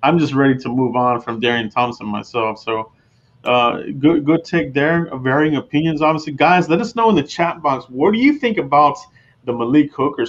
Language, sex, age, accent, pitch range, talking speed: English, male, 30-49, American, 120-145 Hz, 205 wpm